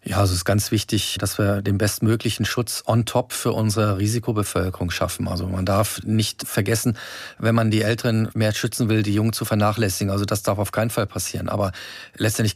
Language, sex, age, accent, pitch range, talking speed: German, male, 40-59, German, 100-115 Hz, 200 wpm